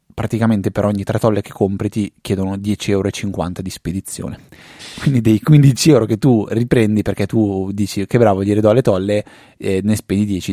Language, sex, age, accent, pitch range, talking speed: Italian, male, 20-39, native, 95-120 Hz, 180 wpm